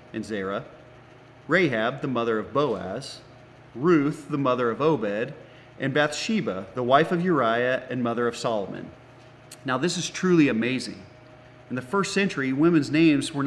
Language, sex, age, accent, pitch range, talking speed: English, male, 30-49, American, 125-155 Hz, 150 wpm